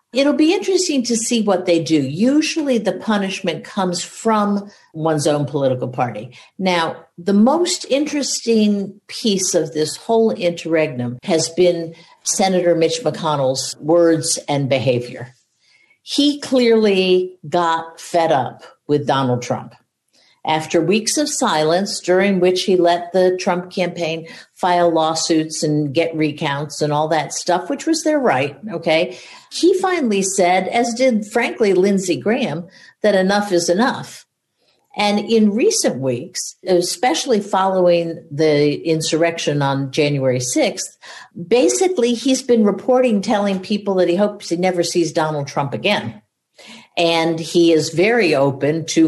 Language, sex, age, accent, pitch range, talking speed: English, female, 50-69, American, 155-210 Hz, 135 wpm